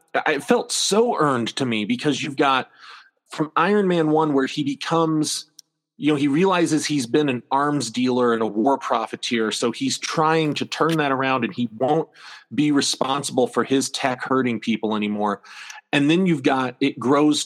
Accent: American